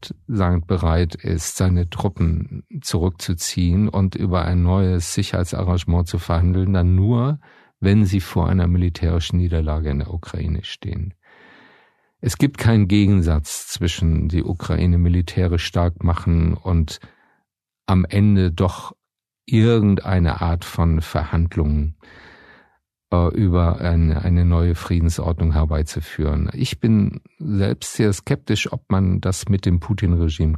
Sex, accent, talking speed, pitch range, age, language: male, German, 115 wpm, 85-100 Hz, 50-69, German